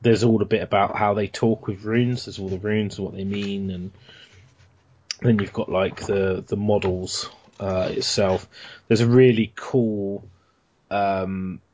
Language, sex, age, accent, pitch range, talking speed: English, male, 20-39, British, 95-110 Hz, 170 wpm